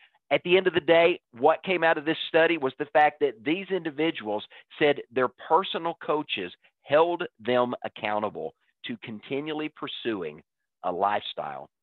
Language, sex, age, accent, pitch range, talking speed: English, male, 50-69, American, 120-160 Hz, 150 wpm